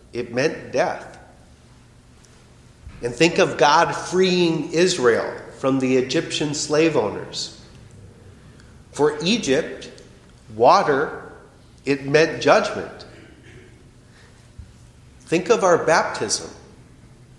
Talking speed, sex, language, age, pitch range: 85 wpm, male, English, 40-59, 125-160 Hz